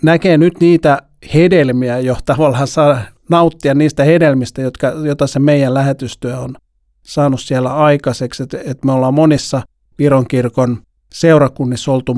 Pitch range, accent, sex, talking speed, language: 130-155 Hz, native, male, 135 wpm, Finnish